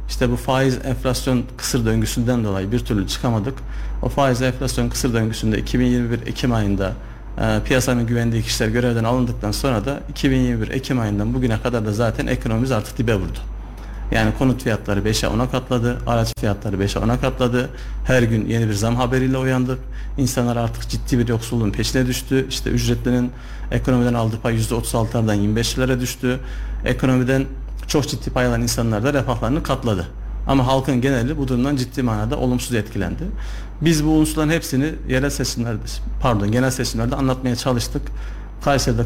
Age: 50-69